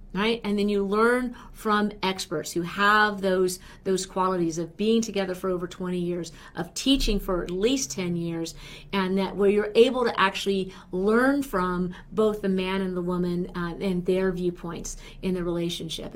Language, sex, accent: English, female, American